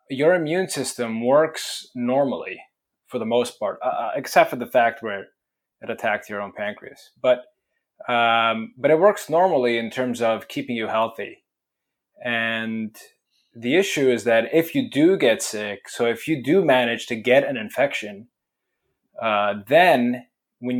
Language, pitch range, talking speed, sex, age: English, 110-130 Hz, 155 wpm, male, 20-39